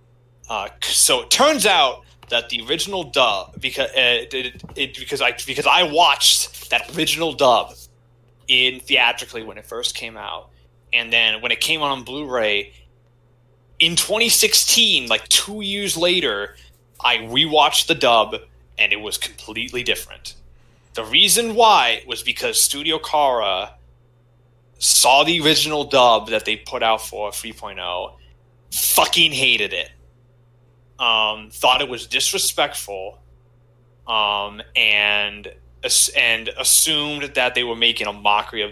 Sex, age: male, 20-39